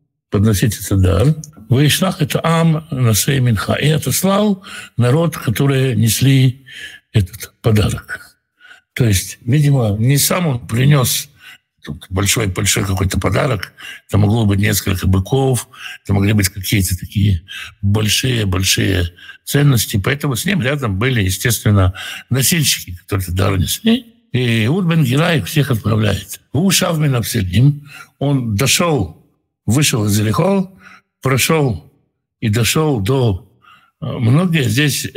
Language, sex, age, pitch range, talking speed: Russian, male, 60-79, 105-155 Hz, 115 wpm